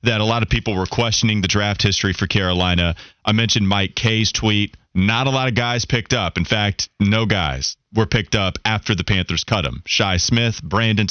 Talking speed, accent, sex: 210 wpm, American, male